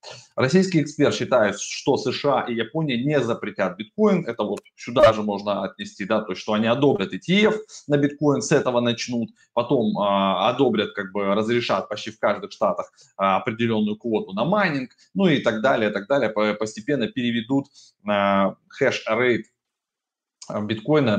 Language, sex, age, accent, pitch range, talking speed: Russian, male, 20-39, native, 105-140 Hz, 145 wpm